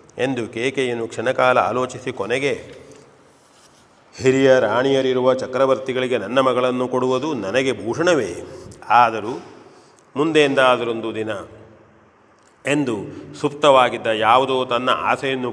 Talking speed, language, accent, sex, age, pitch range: 85 wpm, Kannada, native, male, 40-59, 120-130 Hz